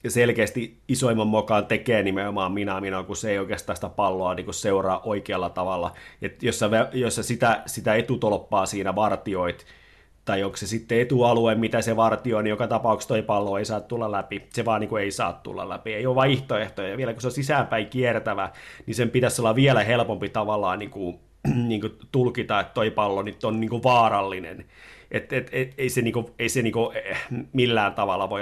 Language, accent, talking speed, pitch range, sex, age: Finnish, native, 170 wpm, 100-125 Hz, male, 30-49